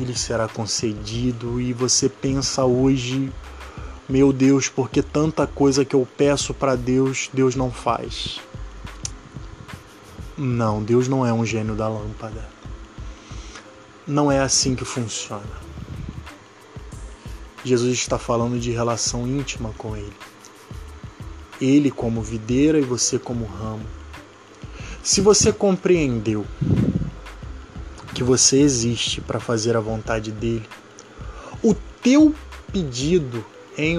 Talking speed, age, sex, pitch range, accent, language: 110 wpm, 20-39, male, 110-135 Hz, Brazilian, Portuguese